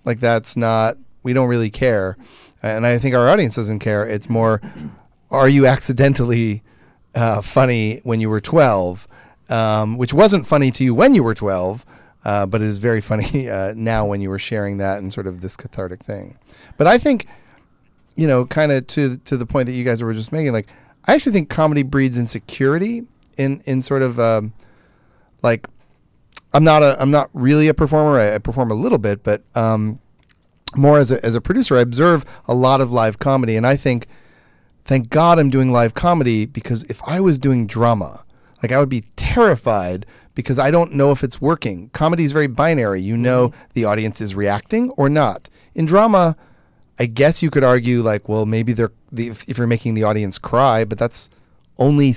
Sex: male